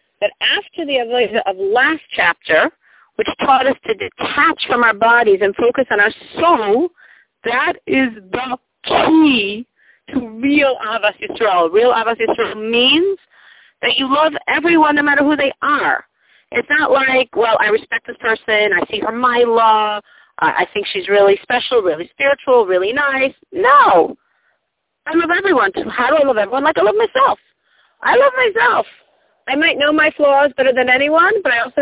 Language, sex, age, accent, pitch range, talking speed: English, female, 40-59, American, 230-335 Hz, 170 wpm